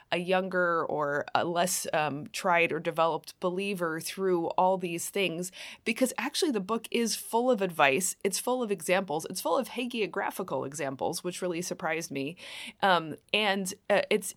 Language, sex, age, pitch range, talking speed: English, female, 20-39, 165-200 Hz, 165 wpm